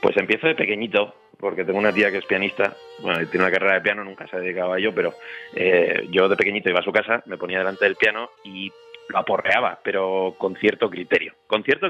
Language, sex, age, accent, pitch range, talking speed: Spanish, male, 30-49, Spanish, 100-140 Hz, 230 wpm